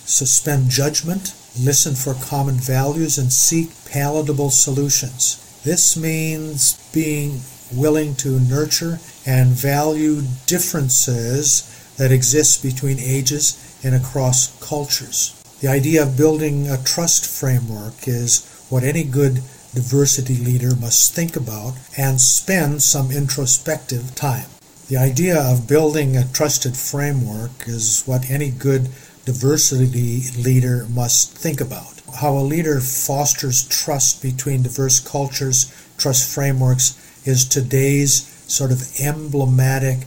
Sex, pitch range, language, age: male, 130-150 Hz, English, 50-69